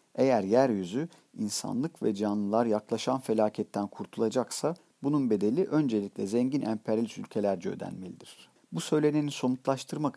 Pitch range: 110-155 Hz